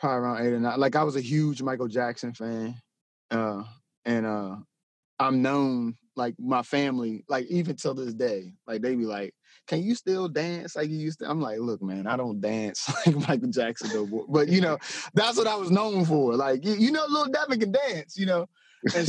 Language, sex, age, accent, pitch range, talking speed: English, male, 30-49, American, 120-160 Hz, 215 wpm